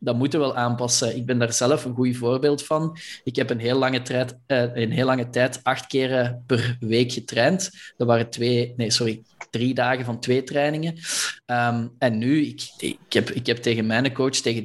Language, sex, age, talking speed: Dutch, male, 20-39, 195 wpm